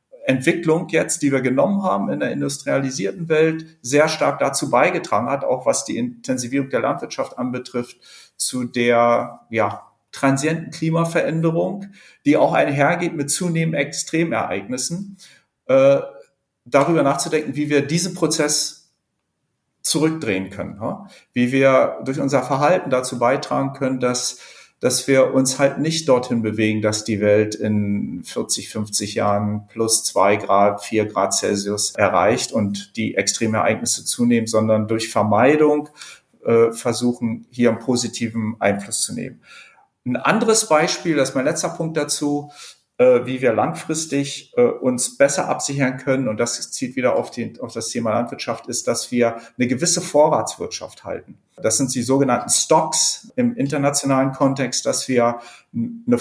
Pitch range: 115-155 Hz